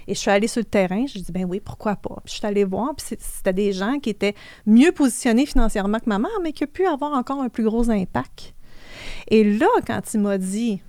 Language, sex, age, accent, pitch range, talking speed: French, female, 30-49, Canadian, 200-265 Hz, 255 wpm